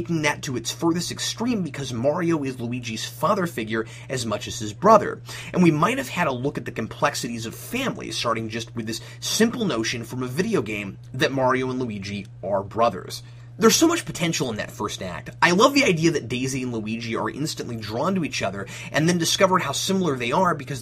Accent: American